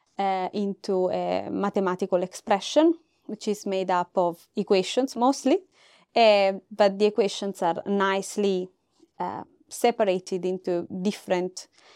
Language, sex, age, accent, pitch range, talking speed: English, female, 20-39, Italian, 180-210 Hz, 110 wpm